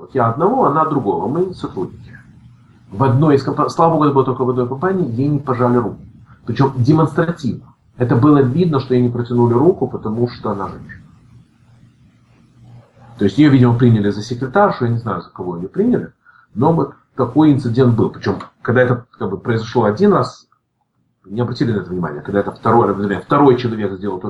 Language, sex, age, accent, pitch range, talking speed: Russian, male, 40-59, native, 120-170 Hz, 180 wpm